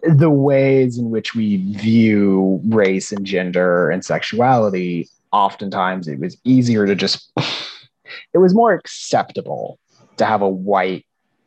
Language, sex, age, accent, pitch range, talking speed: English, male, 30-49, American, 95-140 Hz, 130 wpm